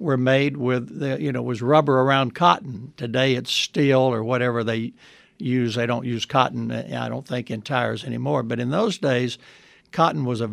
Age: 60-79